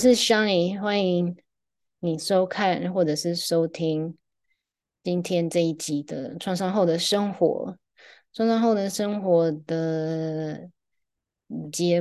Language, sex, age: Chinese, female, 20-39